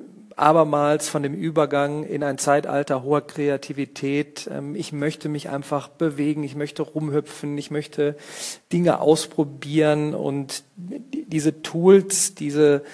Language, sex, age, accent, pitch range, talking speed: German, male, 40-59, German, 140-155 Hz, 115 wpm